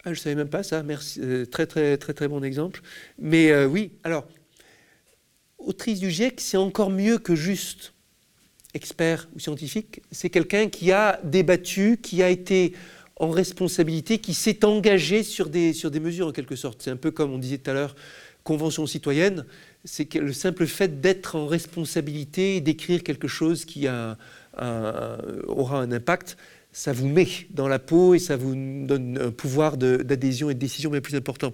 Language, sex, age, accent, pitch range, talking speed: French, male, 50-69, French, 140-180 Hz, 190 wpm